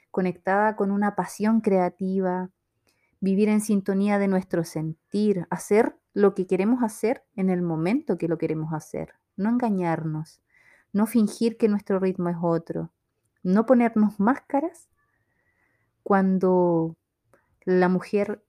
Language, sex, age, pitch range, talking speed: Spanish, female, 30-49, 180-220 Hz, 125 wpm